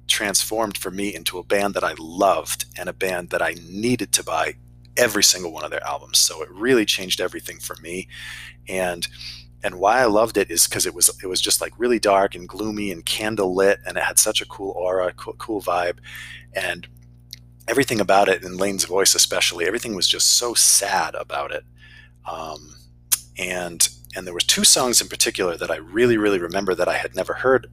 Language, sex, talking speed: English, male, 205 wpm